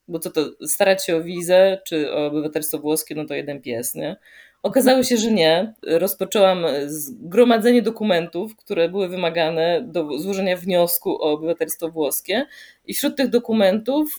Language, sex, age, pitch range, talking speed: Polish, female, 20-39, 155-230 Hz, 155 wpm